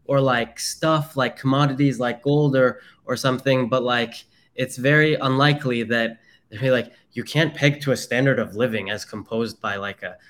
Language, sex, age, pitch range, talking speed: English, male, 10-29, 105-130 Hz, 180 wpm